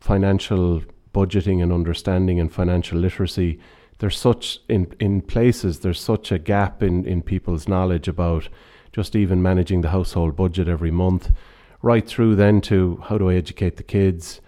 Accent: Irish